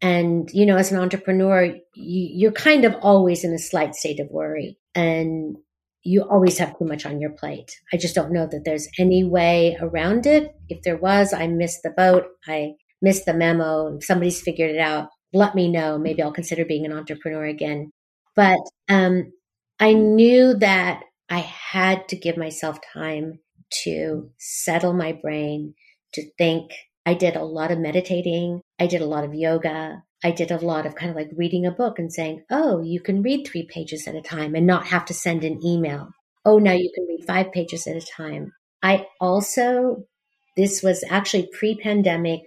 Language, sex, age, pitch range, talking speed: English, female, 50-69, 160-190 Hz, 190 wpm